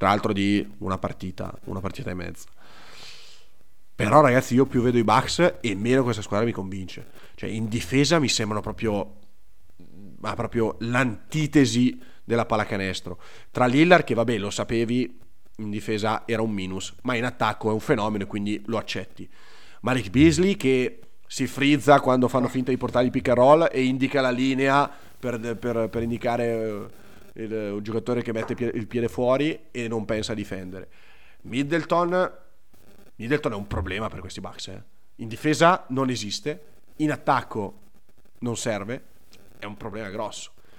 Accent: native